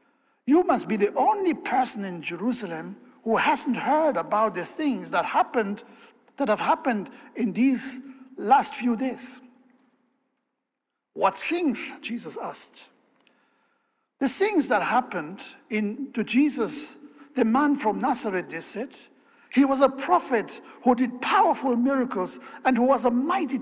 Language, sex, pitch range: English, male, 220-275 Hz